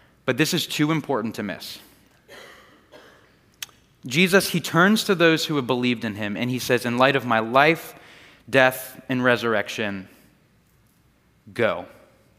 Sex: male